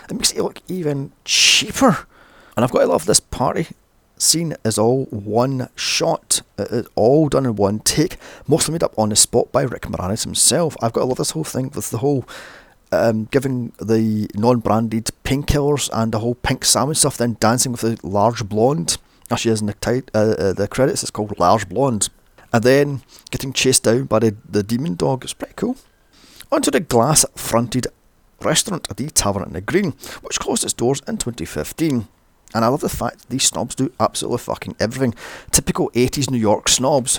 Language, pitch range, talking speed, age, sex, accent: English, 105-135 Hz, 195 wpm, 30-49, male, British